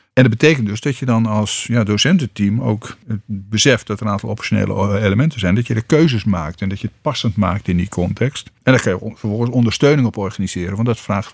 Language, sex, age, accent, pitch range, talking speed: Dutch, male, 50-69, Dutch, 100-120 Hz, 230 wpm